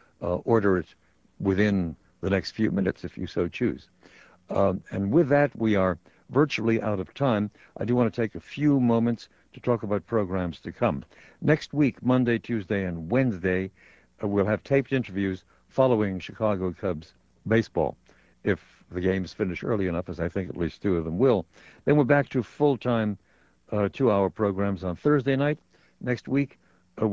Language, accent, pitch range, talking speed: English, American, 95-125 Hz, 175 wpm